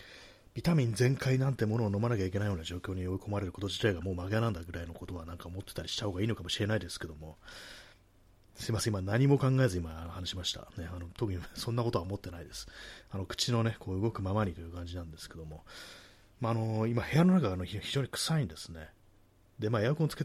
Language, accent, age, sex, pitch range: Japanese, native, 30-49, male, 90-115 Hz